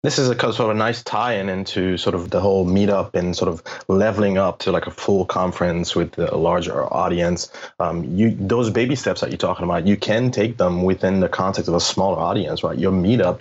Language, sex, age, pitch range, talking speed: English, male, 20-39, 90-110 Hz, 215 wpm